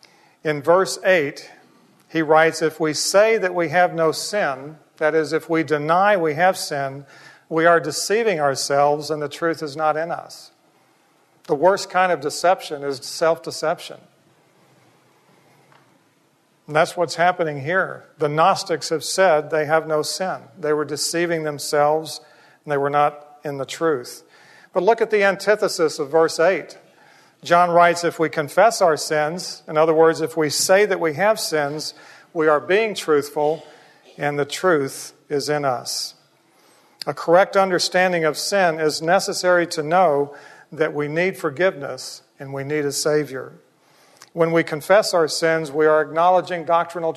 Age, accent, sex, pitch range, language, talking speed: 50-69, American, male, 150-175 Hz, English, 160 wpm